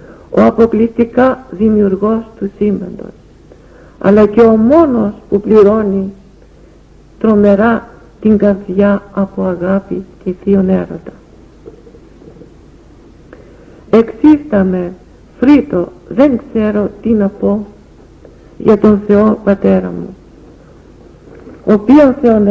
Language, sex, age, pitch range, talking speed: English, female, 60-79, 190-230 Hz, 90 wpm